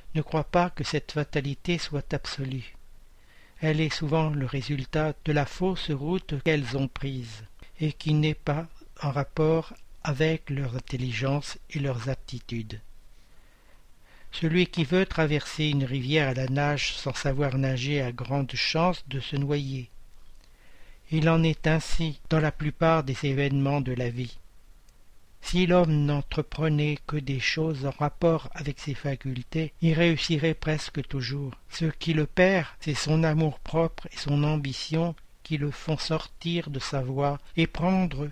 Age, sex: 60-79, male